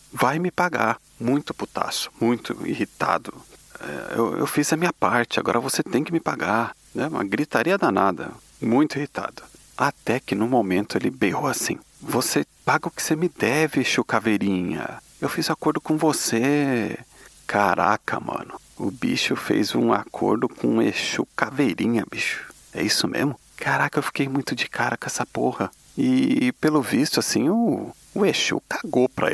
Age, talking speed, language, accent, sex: 40-59, 160 wpm, Portuguese, Brazilian, male